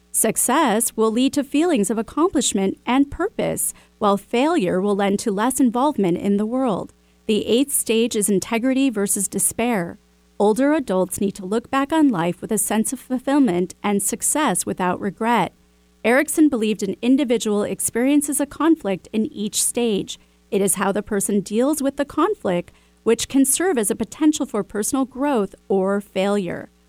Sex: female